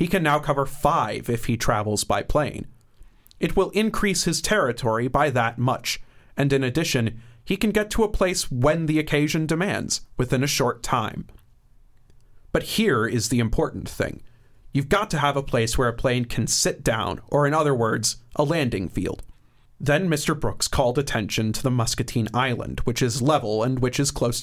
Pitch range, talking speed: 115-155 Hz, 185 wpm